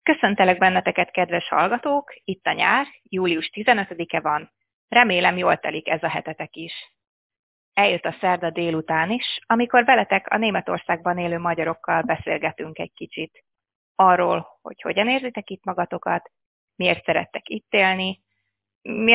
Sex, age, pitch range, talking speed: female, 30-49, 170-220 Hz, 130 wpm